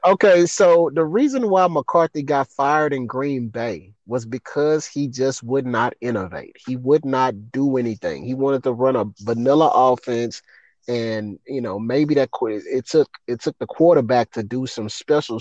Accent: American